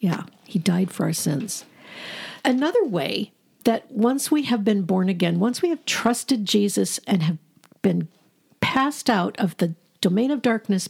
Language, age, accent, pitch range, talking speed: English, 50-69, American, 190-250 Hz, 165 wpm